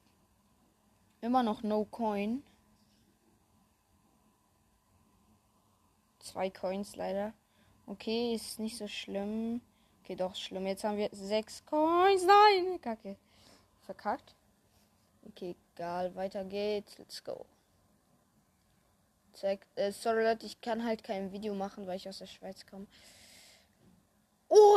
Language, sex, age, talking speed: German, female, 20-39, 105 wpm